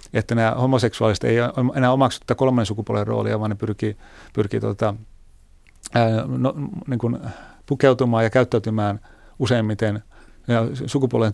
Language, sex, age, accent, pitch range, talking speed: Finnish, male, 30-49, native, 110-130 Hz, 95 wpm